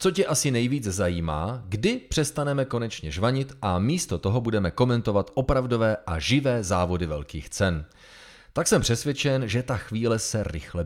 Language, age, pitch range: Czech, 30-49, 95-130 Hz